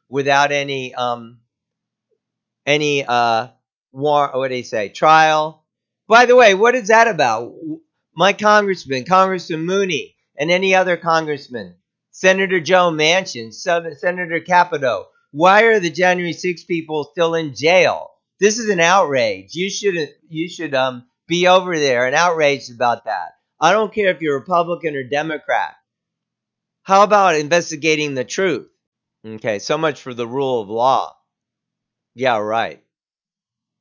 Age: 50-69